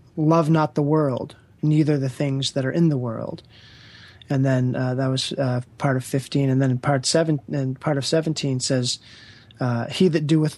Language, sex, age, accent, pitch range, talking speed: English, male, 30-49, American, 120-150 Hz, 195 wpm